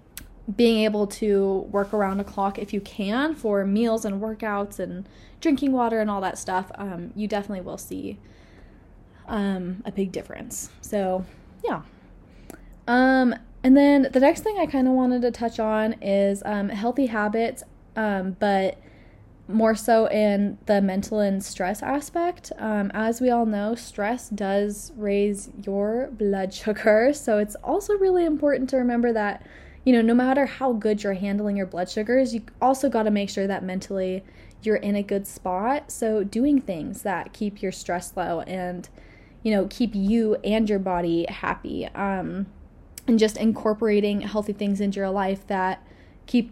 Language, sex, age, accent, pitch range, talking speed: English, female, 10-29, American, 195-230 Hz, 170 wpm